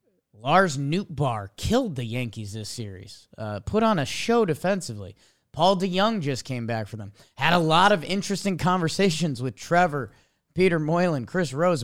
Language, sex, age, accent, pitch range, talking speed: English, male, 30-49, American, 130-185 Hz, 160 wpm